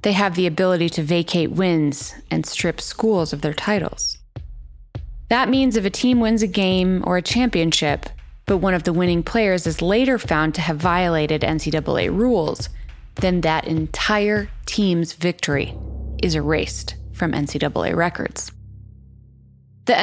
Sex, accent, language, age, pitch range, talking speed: female, American, English, 20-39, 165-225 Hz, 145 wpm